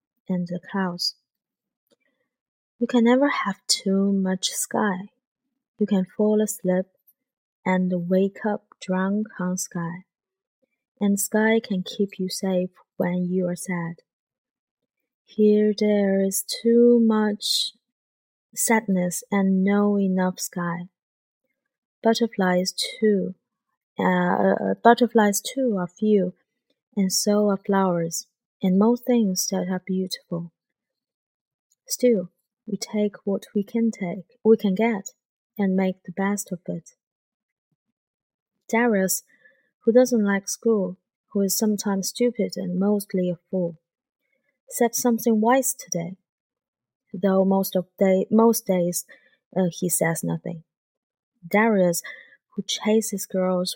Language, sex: Chinese, female